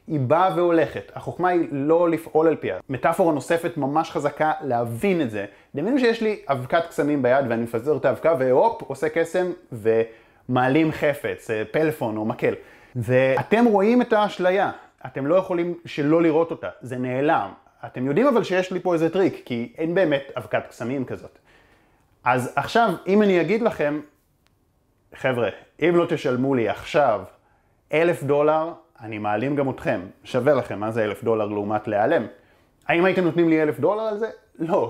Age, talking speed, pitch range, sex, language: 30-49, 165 wpm, 120-170 Hz, male, Hebrew